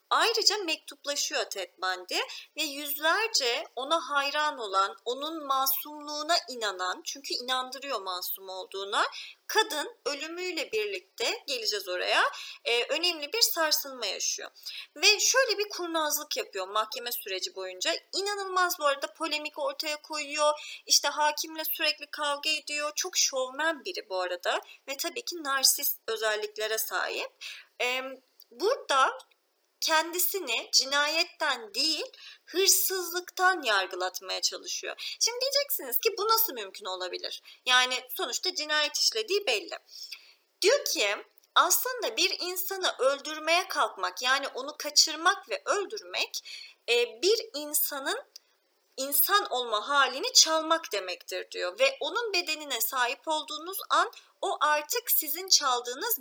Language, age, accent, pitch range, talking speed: Turkish, 40-59, native, 265-380 Hz, 115 wpm